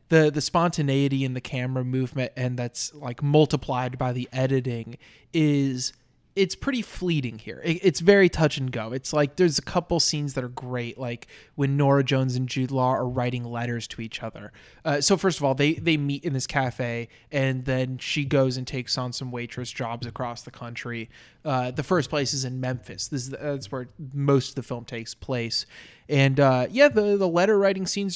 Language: English